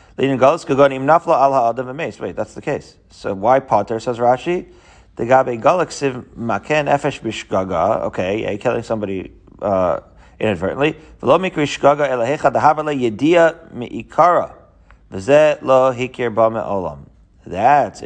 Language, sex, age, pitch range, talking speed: English, male, 40-59, 120-165 Hz, 50 wpm